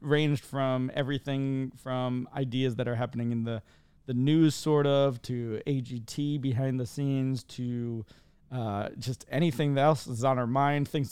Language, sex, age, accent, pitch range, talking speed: English, male, 40-59, American, 125-160 Hz, 160 wpm